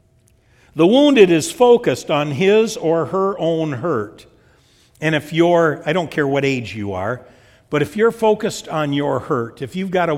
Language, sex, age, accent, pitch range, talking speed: English, male, 60-79, American, 120-180 Hz, 185 wpm